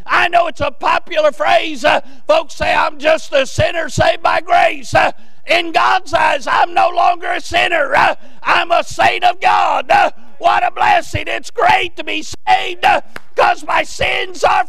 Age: 40-59